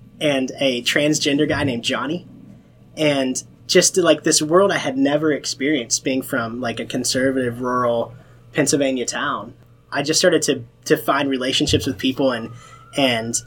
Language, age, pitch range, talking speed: English, 20-39, 120-150 Hz, 150 wpm